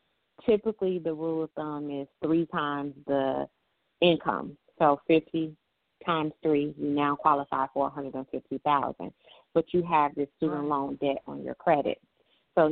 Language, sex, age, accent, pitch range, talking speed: English, female, 30-49, American, 155-185 Hz, 160 wpm